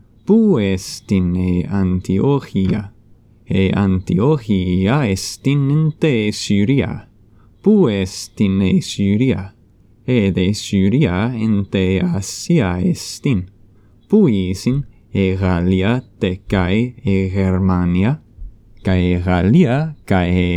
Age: 30-49